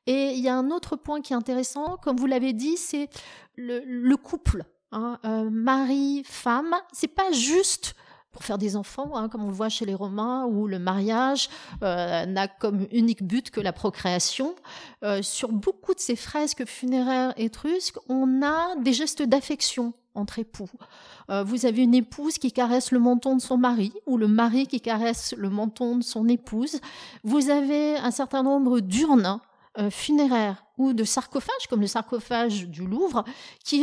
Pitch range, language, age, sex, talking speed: 210-270 Hz, French, 40-59, female, 180 wpm